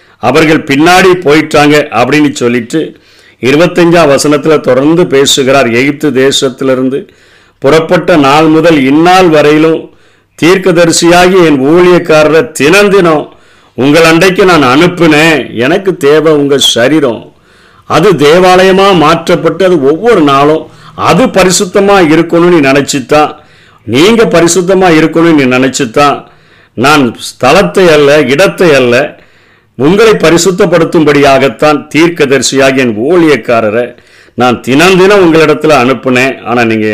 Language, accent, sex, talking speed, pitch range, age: Tamil, native, male, 95 wpm, 125-165 Hz, 50-69